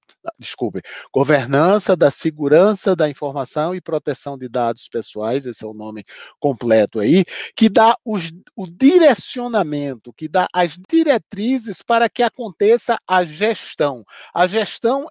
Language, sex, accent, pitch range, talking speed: Portuguese, male, Brazilian, 150-220 Hz, 125 wpm